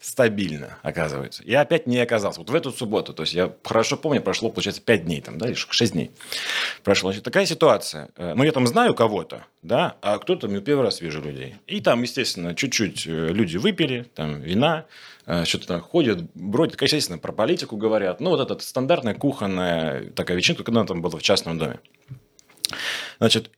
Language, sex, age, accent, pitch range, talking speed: Russian, male, 30-49, native, 90-140 Hz, 185 wpm